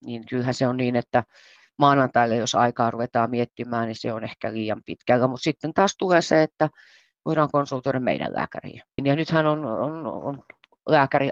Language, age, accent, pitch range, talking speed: Finnish, 30-49, native, 115-140 Hz, 175 wpm